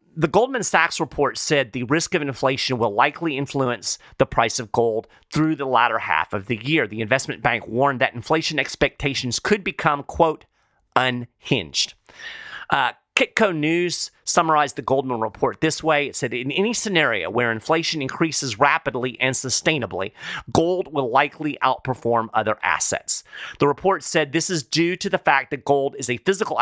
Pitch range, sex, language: 120-160 Hz, male, English